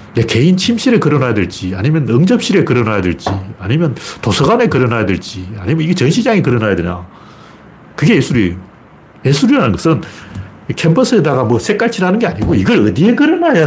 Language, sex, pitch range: Korean, male, 105-170 Hz